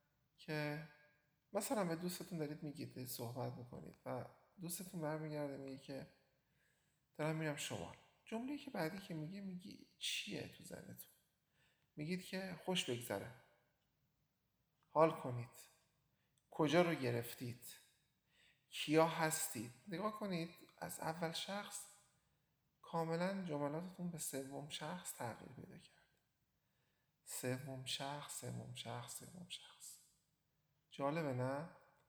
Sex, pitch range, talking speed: male, 140-165 Hz, 110 wpm